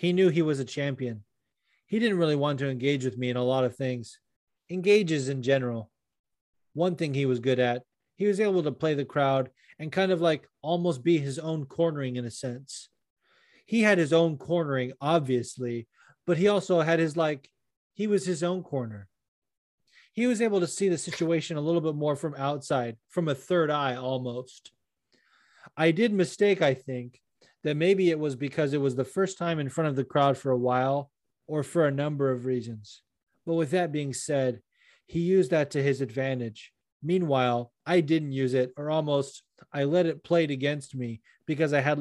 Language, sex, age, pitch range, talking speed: English, male, 30-49, 130-165 Hz, 195 wpm